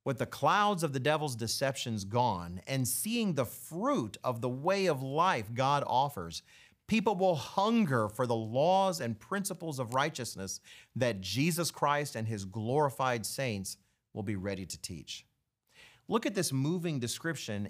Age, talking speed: 40-59, 155 wpm